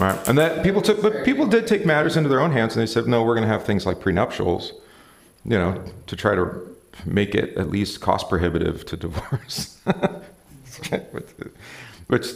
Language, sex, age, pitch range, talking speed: English, male, 40-59, 90-115 Hz, 190 wpm